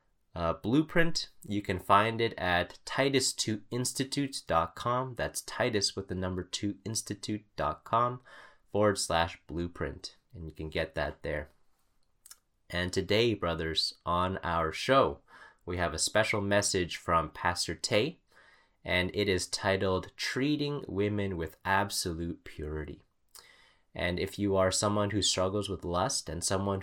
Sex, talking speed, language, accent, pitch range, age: male, 130 wpm, English, American, 90-120 Hz, 20-39